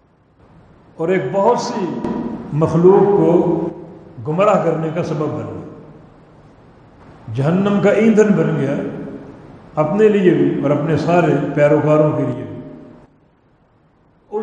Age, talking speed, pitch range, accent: 60-79, 110 wpm, 150-190 Hz, Indian